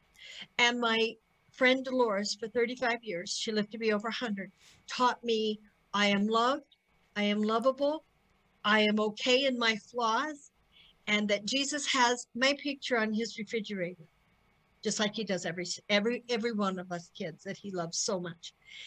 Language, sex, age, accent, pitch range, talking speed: English, female, 50-69, American, 190-240 Hz, 165 wpm